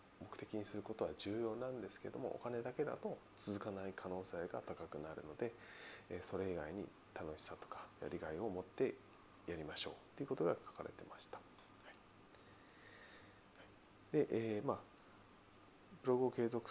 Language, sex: Japanese, male